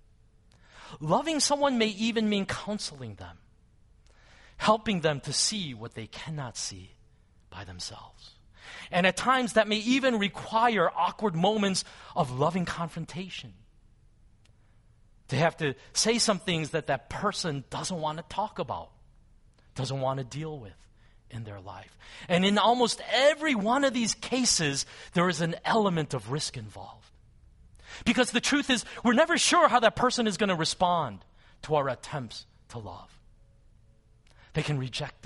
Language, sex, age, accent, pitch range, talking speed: English, male, 40-59, American, 115-185 Hz, 150 wpm